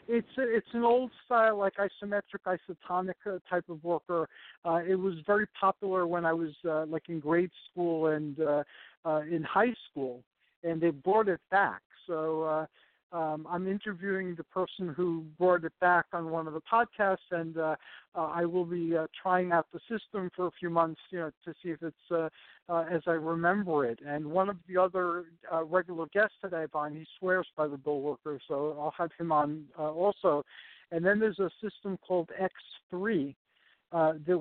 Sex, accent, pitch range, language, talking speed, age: male, American, 160-185 Hz, English, 190 wpm, 60-79